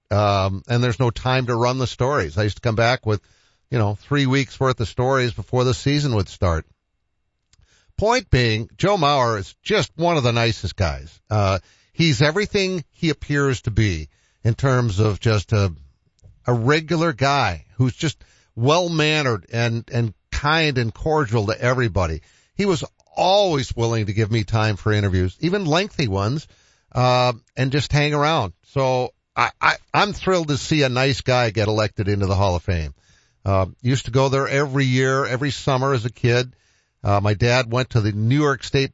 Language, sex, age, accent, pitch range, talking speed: English, male, 50-69, American, 105-135 Hz, 185 wpm